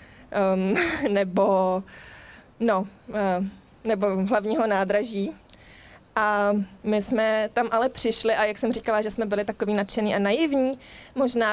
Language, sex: Czech, female